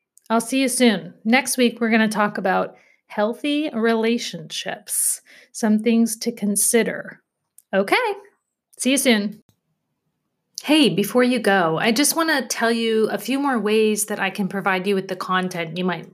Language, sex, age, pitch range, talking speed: English, female, 30-49, 190-245 Hz, 165 wpm